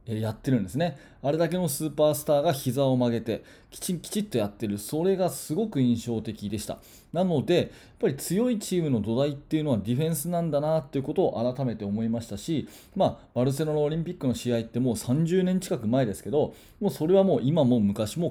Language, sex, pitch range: Japanese, male, 115-175 Hz